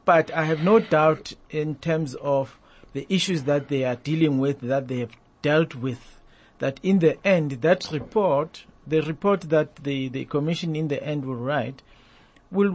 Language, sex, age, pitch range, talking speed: English, male, 50-69, 140-170 Hz, 180 wpm